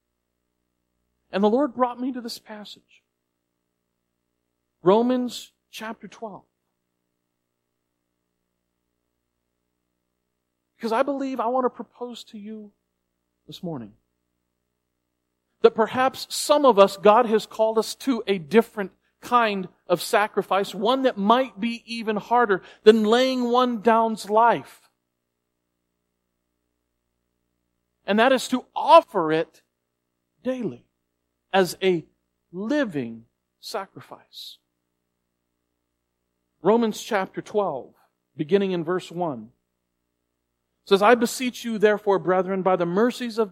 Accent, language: American, English